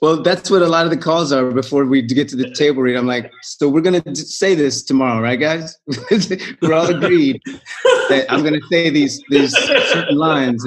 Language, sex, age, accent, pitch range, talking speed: English, male, 30-49, American, 115-155 Hz, 220 wpm